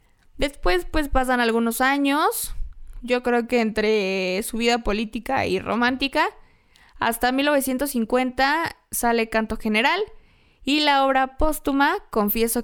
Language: Spanish